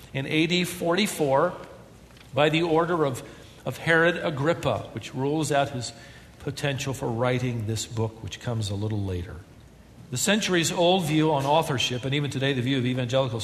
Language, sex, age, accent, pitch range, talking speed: English, male, 50-69, American, 120-165 Hz, 160 wpm